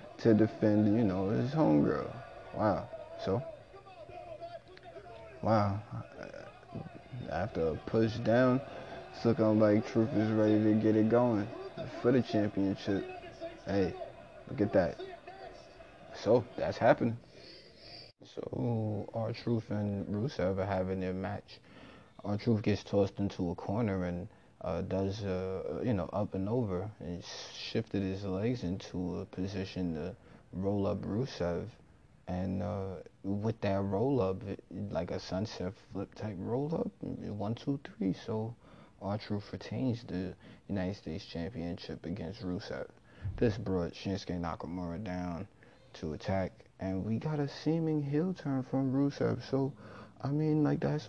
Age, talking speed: 20-39, 135 wpm